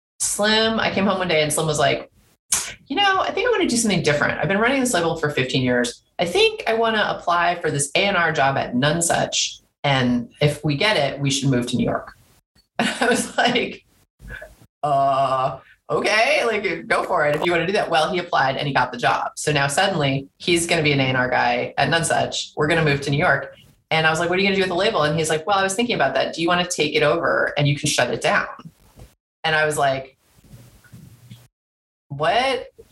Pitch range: 135-180 Hz